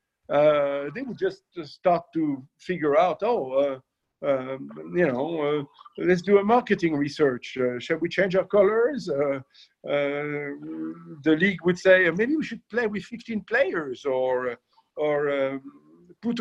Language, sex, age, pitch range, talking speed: English, male, 50-69, 145-190 Hz, 155 wpm